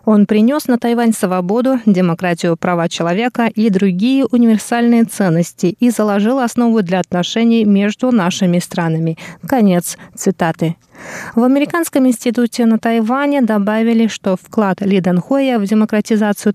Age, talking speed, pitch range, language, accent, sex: 20-39, 125 wpm, 190-240 Hz, Russian, native, female